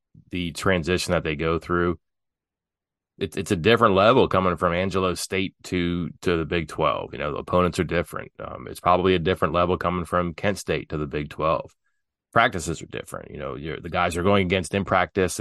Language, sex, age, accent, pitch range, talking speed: English, male, 30-49, American, 80-95 Hz, 205 wpm